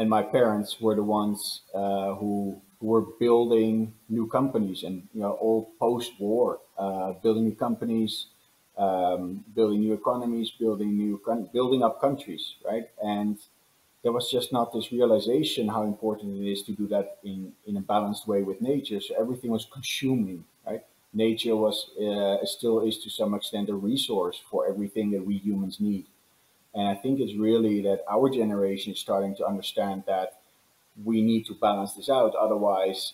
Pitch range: 100-110 Hz